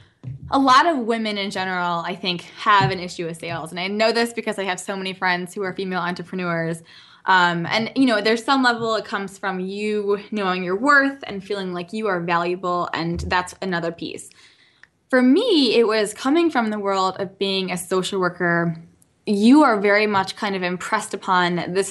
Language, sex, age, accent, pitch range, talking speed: English, female, 10-29, American, 180-225 Hz, 200 wpm